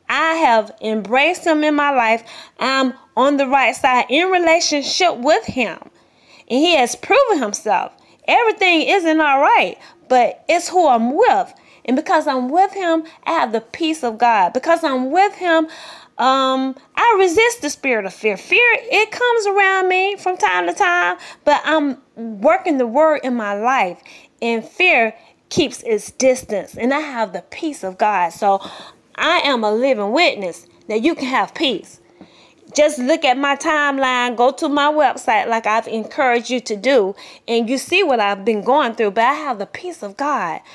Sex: female